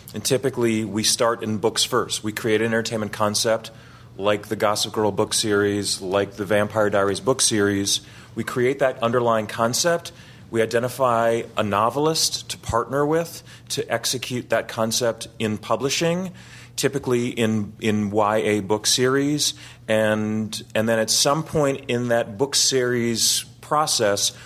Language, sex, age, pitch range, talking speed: English, male, 30-49, 105-125 Hz, 145 wpm